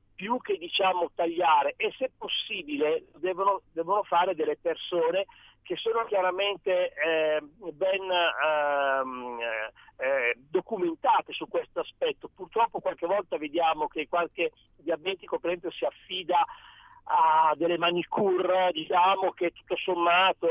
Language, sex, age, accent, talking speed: Italian, male, 50-69, native, 120 wpm